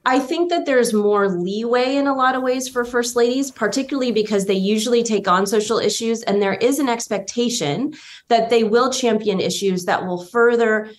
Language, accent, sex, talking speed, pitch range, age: English, American, female, 190 wpm, 190-240 Hz, 20-39